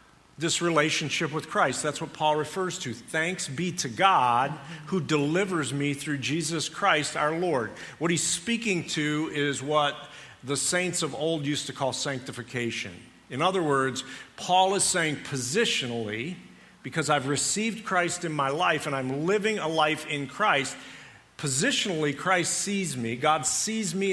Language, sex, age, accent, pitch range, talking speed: English, male, 50-69, American, 140-175 Hz, 155 wpm